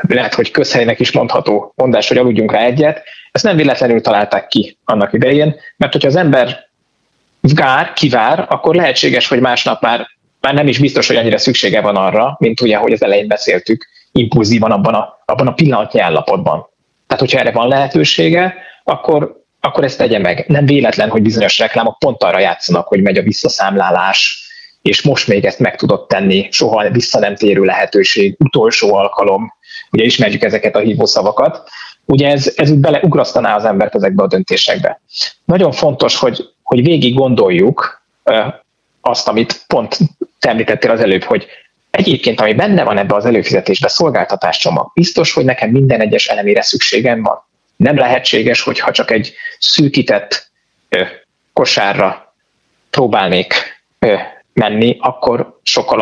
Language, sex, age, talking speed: Hungarian, male, 20-39, 155 wpm